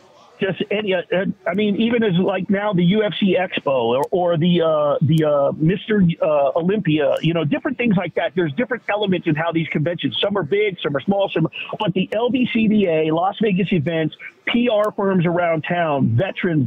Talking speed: 185 wpm